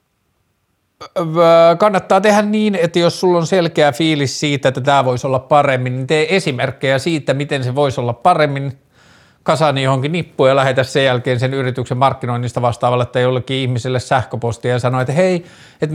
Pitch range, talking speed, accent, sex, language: 125-150 Hz, 165 wpm, native, male, Finnish